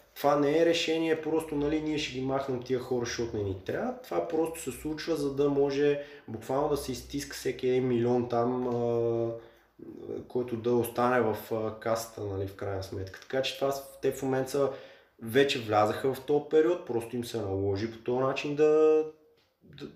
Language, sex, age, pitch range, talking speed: Bulgarian, male, 20-39, 105-135 Hz, 175 wpm